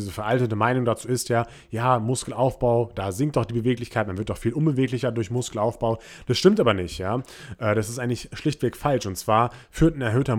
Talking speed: 200 wpm